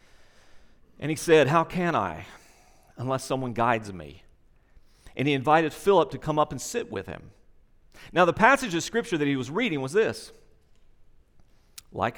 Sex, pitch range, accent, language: male, 110-175 Hz, American, English